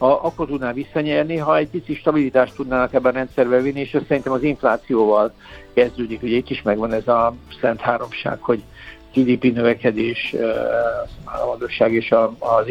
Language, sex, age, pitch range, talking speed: Hungarian, male, 60-79, 120-145 Hz, 155 wpm